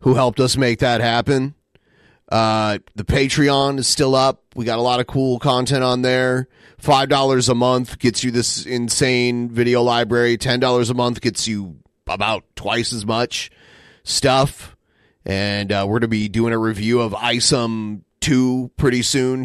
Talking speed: 165 wpm